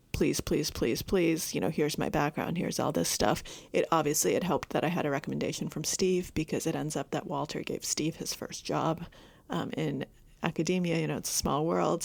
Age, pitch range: 30-49, 155-180 Hz